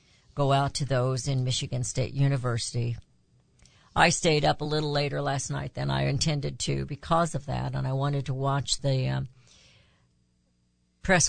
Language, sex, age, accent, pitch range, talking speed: English, female, 60-79, American, 120-160 Hz, 165 wpm